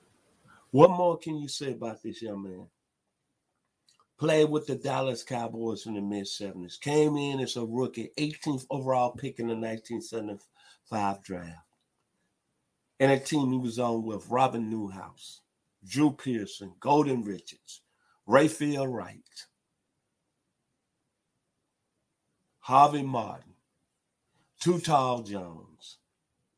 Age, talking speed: 50-69, 110 wpm